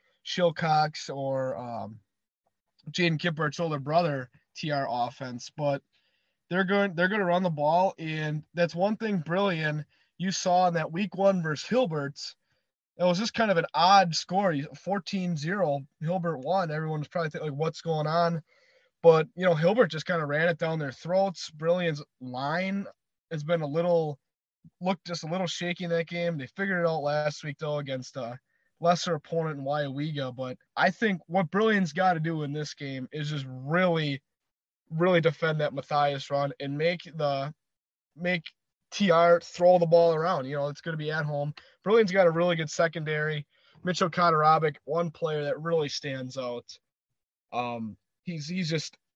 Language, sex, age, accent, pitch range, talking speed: English, male, 20-39, American, 145-180 Hz, 170 wpm